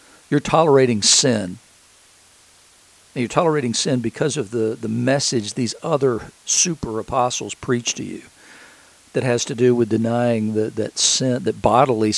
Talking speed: 140 wpm